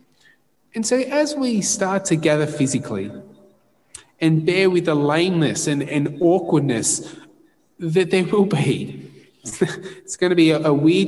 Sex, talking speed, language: male, 145 wpm, English